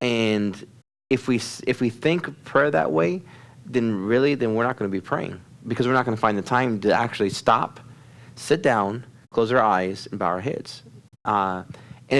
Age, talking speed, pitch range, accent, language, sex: 30-49, 185 wpm, 105-135 Hz, American, English, male